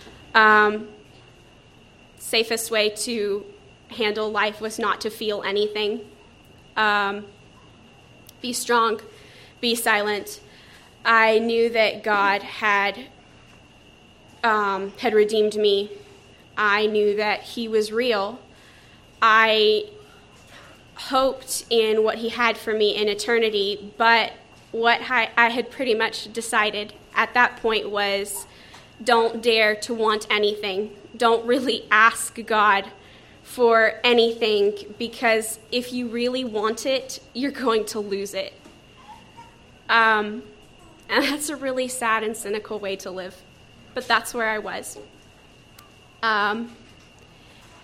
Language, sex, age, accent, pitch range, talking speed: English, female, 20-39, American, 210-235 Hz, 115 wpm